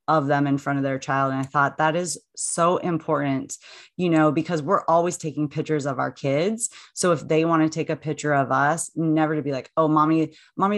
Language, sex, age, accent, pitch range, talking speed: English, female, 30-49, American, 140-175 Hz, 230 wpm